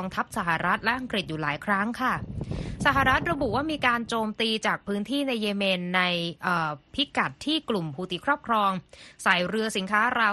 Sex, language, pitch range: female, Thai, 180-225 Hz